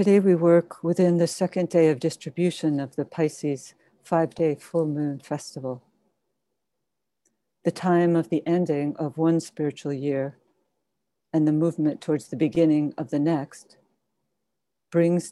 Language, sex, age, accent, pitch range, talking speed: English, female, 60-79, American, 145-170 Hz, 140 wpm